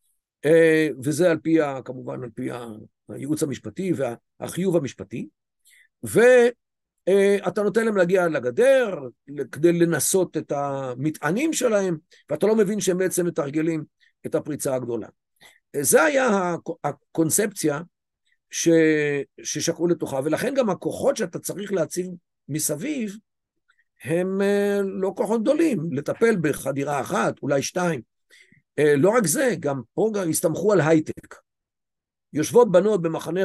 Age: 50-69